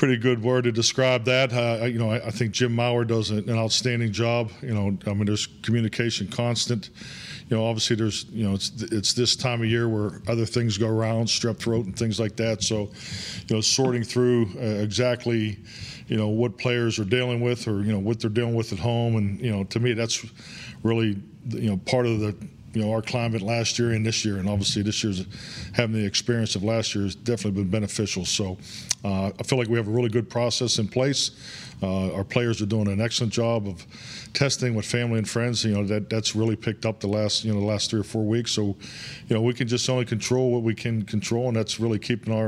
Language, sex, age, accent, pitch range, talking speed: English, male, 40-59, American, 105-120 Hz, 235 wpm